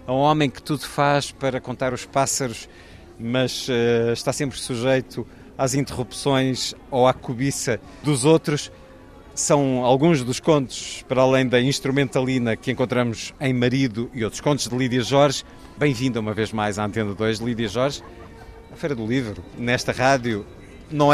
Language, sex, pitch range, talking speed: Portuguese, male, 120-145 Hz, 160 wpm